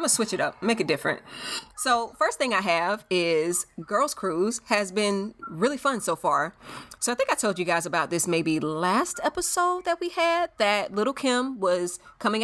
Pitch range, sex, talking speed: 170-225 Hz, female, 200 wpm